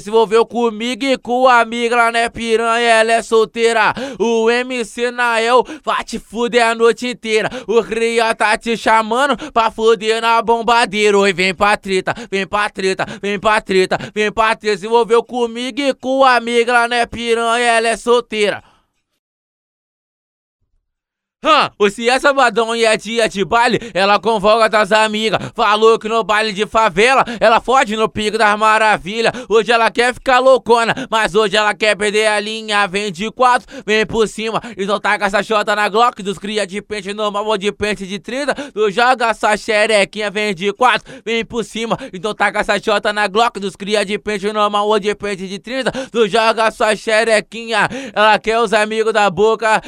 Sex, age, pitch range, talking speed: male, 20-39, 210-235 Hz, 180 wpm